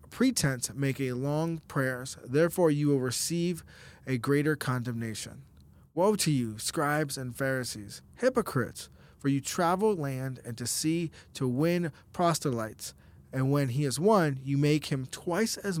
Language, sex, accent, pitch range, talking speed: English, male, American, 130-165 Hz, 150 wpm